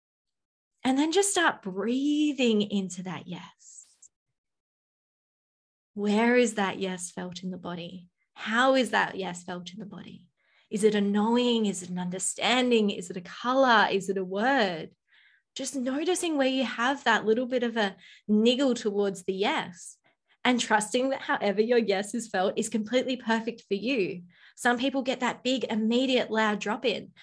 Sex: female